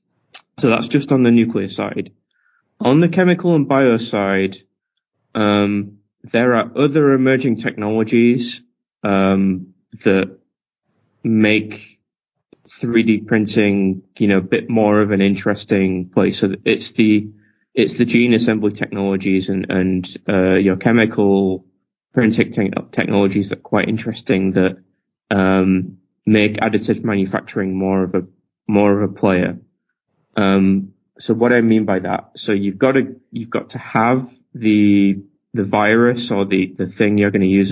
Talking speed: 145 wpm